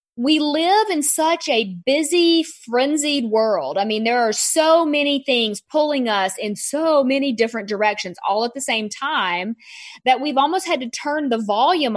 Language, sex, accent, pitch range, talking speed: English, female, American, 210-290 Hz, 175 wpm